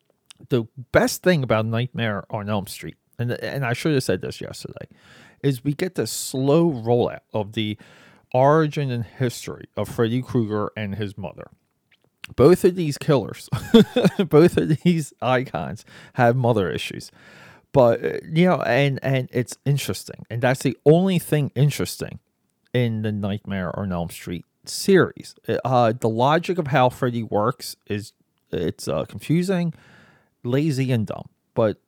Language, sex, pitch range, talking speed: English, male, 110-145 Hz, 150 wpm